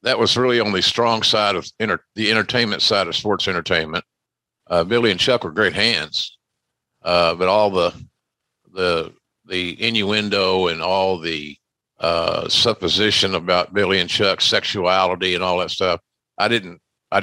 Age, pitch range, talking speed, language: 50-69, 90-110 Hz, 160 wpm, English